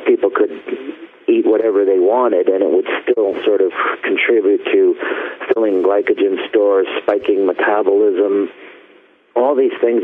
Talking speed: 130 wpm